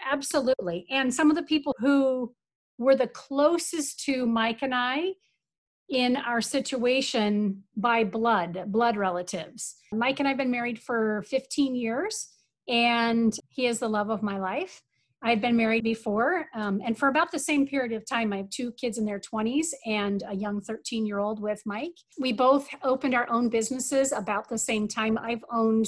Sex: female